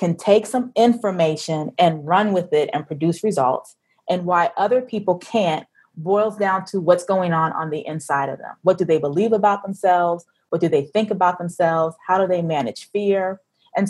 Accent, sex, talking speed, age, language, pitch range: American, female, 195 wpm, 30-49, English, 175-210 Hz